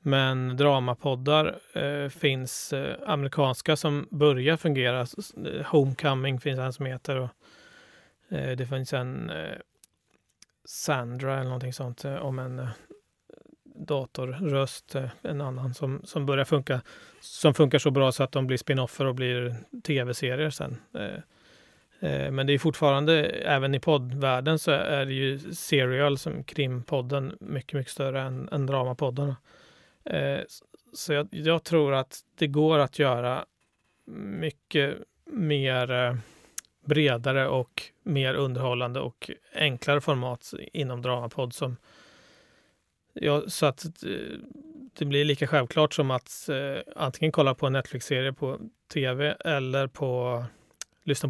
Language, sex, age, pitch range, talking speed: Swedish, male, 30-49, 130-150 Hz, 130 wpm